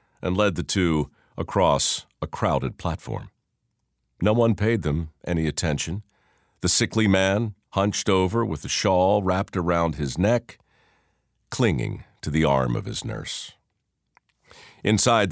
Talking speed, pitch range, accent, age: 135 wpm, 80-110 Hz, American, 50-69